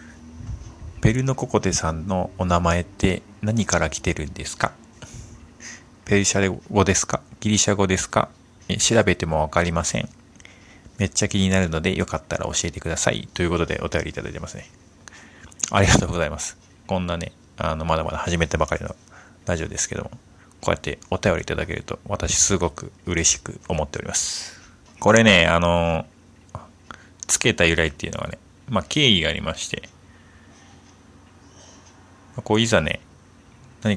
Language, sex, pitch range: Japanese, male, 85-105 Hz